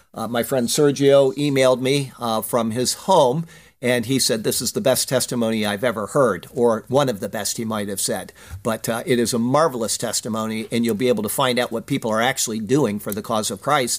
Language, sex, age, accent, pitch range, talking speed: English, male, 50-69, American, 125-170 Hz, 230 wpm